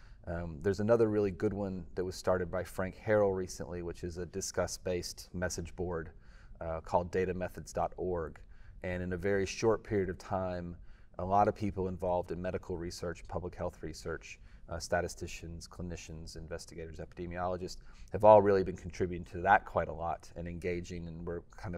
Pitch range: 85-95 Hz